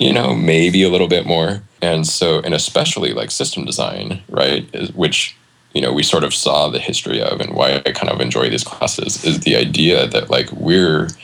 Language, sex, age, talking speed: English, male, 20-39, 210 wpm